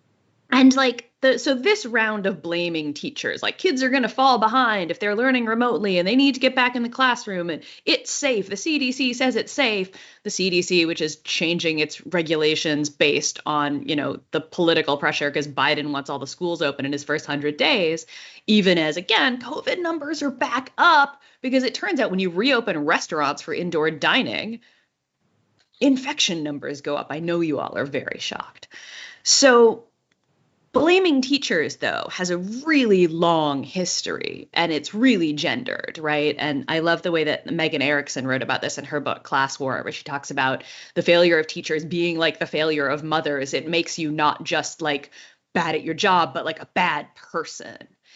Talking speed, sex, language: 190 wpm, female, English